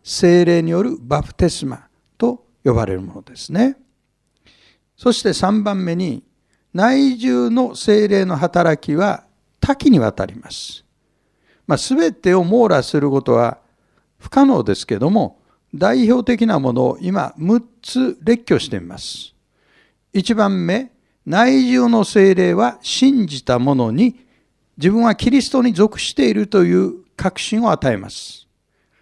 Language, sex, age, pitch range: Japanese, male, 60-79, 165-225 Hz